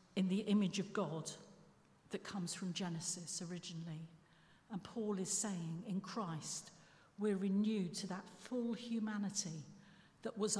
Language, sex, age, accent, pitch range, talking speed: English, female, 50-69, British, 175-225 Hz, 135 wpm